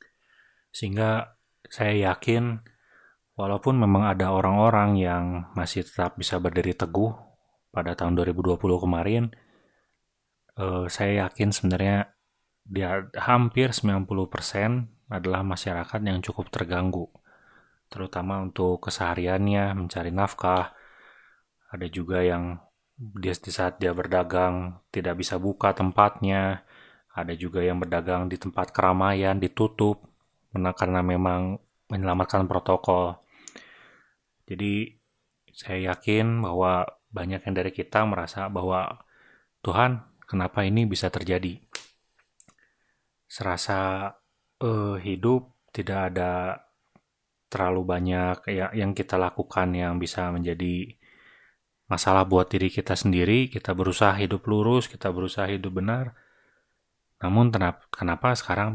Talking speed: 105 wpm